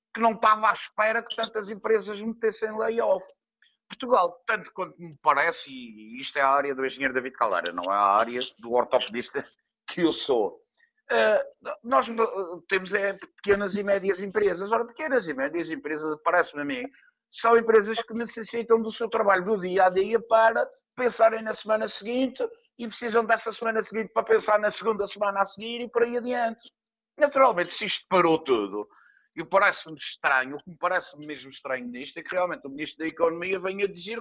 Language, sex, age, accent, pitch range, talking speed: Portuguese, male, 50-69, Portuguese, 185-245 Hz, 190 wpm